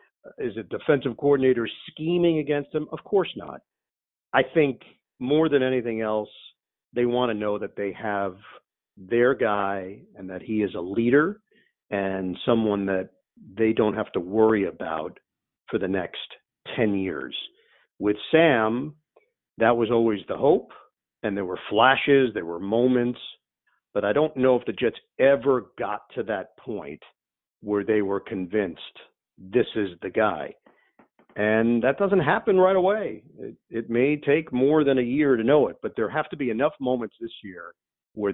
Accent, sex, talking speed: American, male, 165 wpm